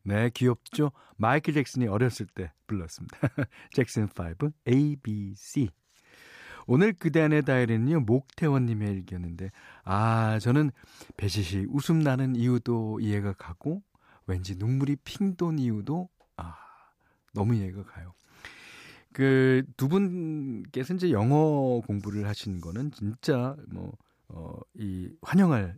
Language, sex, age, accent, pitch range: Korean, male, 40-59, native, 105-150 Hz